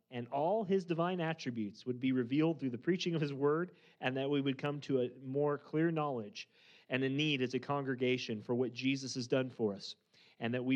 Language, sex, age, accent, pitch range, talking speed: English, male, 30-49, American, 120-140 Hz, 225 wpm